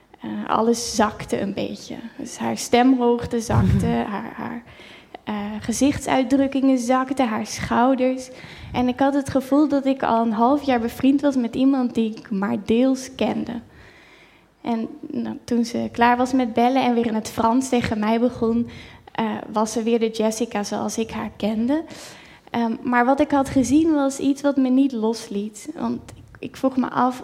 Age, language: 10-29, Dutch